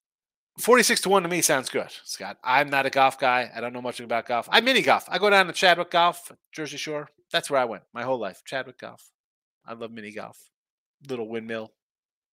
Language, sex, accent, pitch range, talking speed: English, male, American, 130-185 Hz, 220 wpm